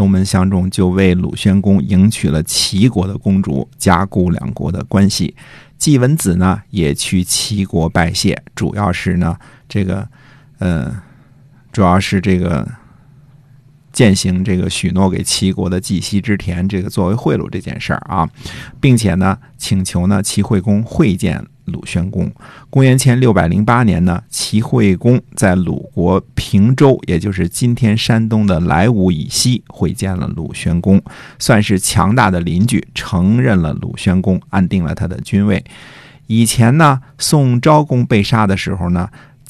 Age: 50-69